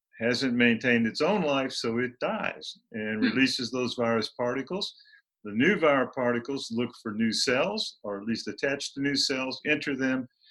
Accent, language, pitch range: American, English, 115-150 Hz